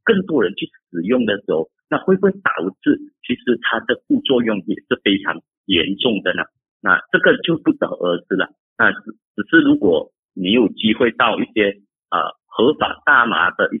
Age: 50-69